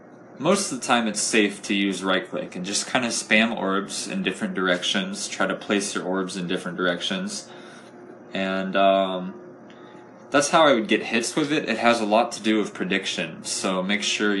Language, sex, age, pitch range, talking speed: English, male, 20-39, 90-110 Hz, 195 wpm